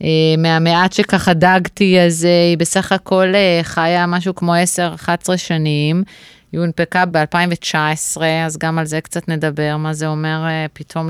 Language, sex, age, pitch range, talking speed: Hebrew, female, 30-49, 165-195 Hz, 155 wpm